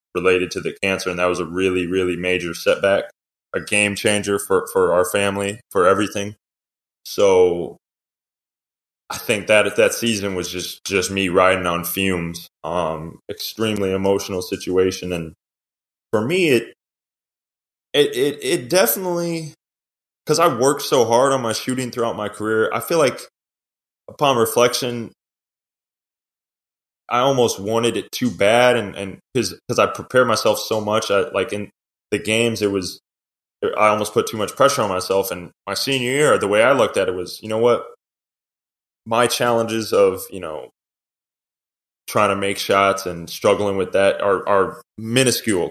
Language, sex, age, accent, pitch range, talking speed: English, male, 20-39, American, 95-115 Hz, 160 wpm